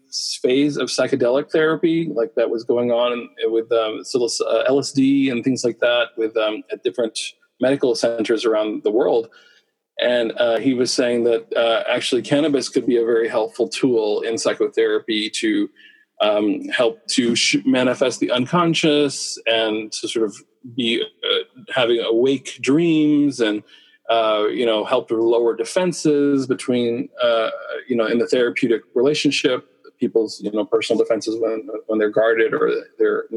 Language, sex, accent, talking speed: English, male, American, 155 wpm